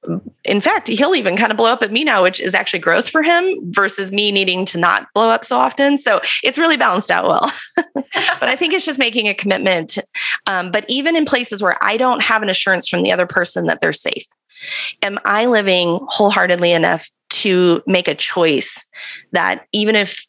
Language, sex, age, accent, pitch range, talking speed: English, female, 30-49, American, 175-230 Hz, 205 wpm